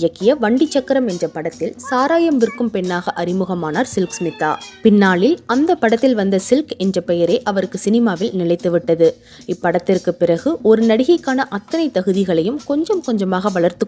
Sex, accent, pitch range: female, native, 180-245 Hz